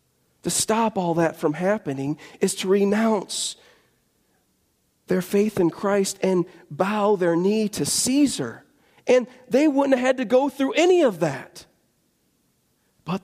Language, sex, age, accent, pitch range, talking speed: English, male, 40-59, American, 140-215 Hz, 140 wpm